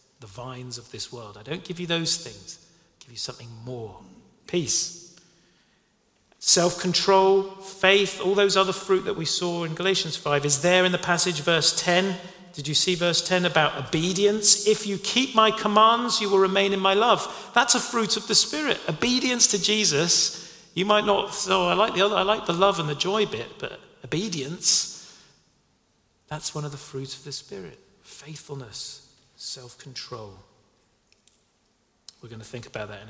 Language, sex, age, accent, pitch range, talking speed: English, male, 40-59, British, 130-195 Hz, 180 wpm